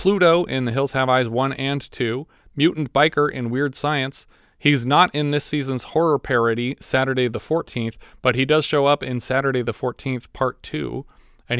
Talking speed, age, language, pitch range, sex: 185 wpm, 30-49, English, 125-155 Hz, male